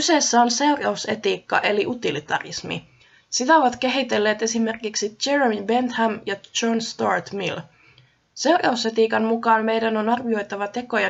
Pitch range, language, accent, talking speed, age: 205-245 Hz, Finnish, native, 115 wpm, 20-39